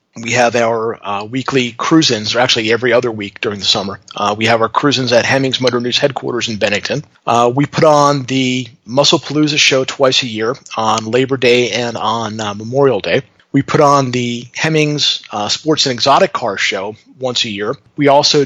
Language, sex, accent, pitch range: English, male, American, 115-140 Hz